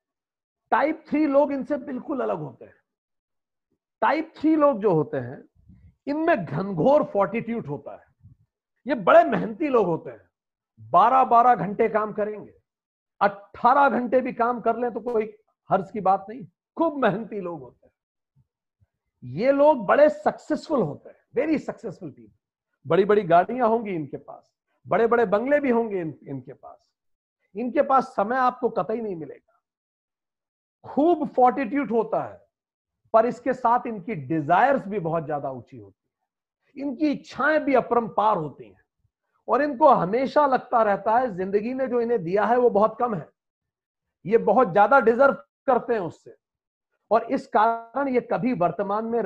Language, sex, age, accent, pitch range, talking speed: Hindi, male, 50-69, native, 190-255 Hz, 155 wpm